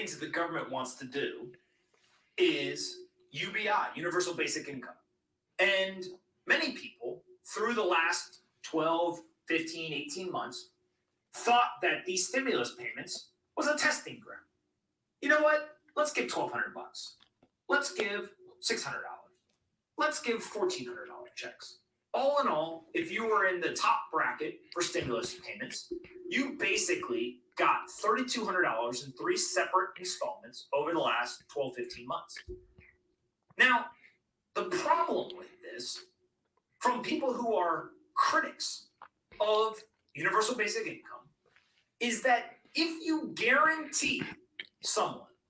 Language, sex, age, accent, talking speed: English, male, 30-49, American, 120 wpm